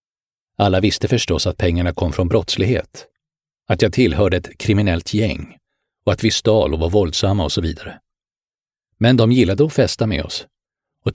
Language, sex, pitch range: English, male, 90-120 Hz